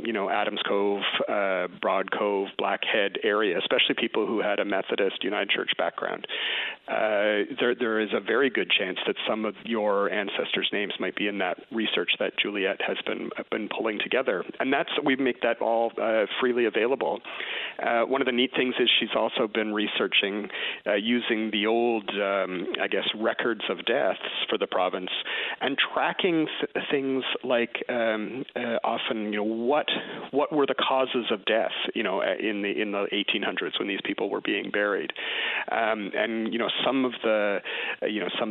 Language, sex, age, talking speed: English, male, 40-59, 180 wpm